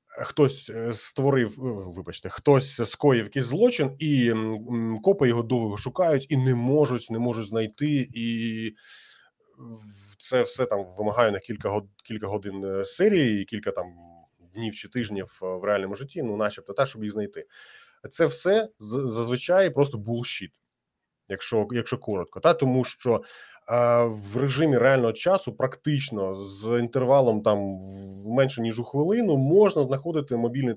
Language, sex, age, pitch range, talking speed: Ukrainian, male, 20-39, 110-140 Hz, 140 wpm